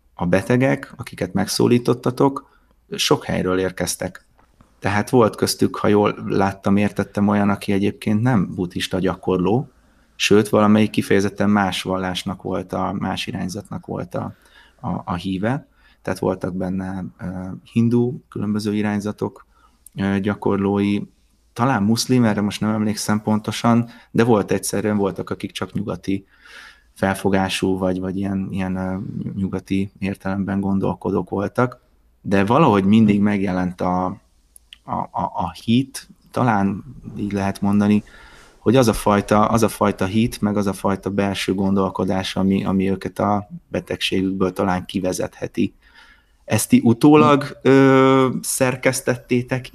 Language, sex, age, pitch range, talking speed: Hungarian, male, 30-49, 95-110 Hz, 120 wpm